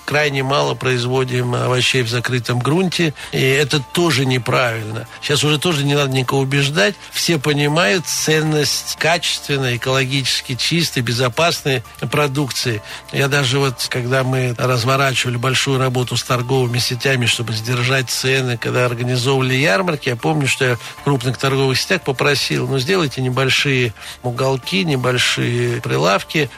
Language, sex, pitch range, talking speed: Russian, male, 125-145 Hz, 130 wpm